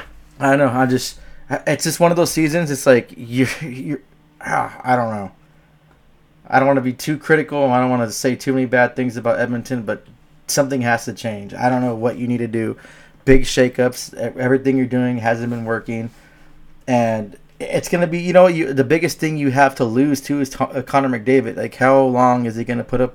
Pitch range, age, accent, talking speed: 115-130 Hz, 20-39, American, 215 wpm